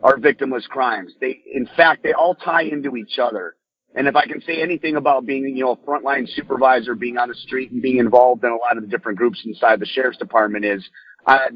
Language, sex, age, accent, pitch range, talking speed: English, male, 30-49, American, 120-145 Hz, 235 wpm